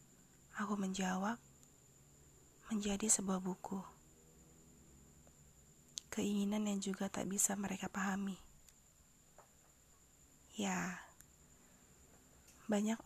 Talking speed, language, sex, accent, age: 65 wpm, Indonesian, female, native, 20-39